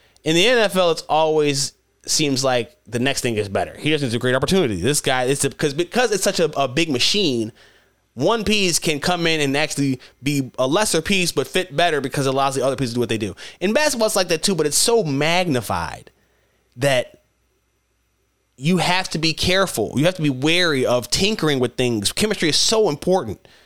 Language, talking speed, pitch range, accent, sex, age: English, 215 wpm, 130-185 Hz, American, male, 20-39